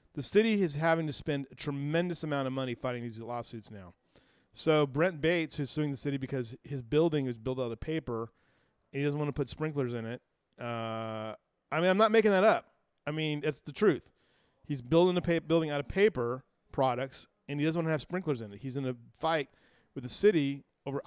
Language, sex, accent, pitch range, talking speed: English, male, American, 125-165 Hz, 215 wpm